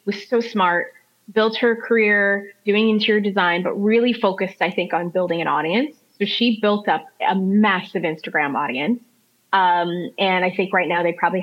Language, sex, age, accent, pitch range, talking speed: English, female, 30-49, American, 175-220 Hz, 180 wpm